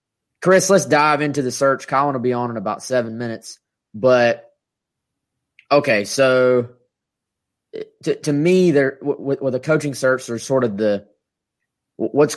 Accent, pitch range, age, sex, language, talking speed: American, 110-135 Hz, 20-39, male, English, 150 wpm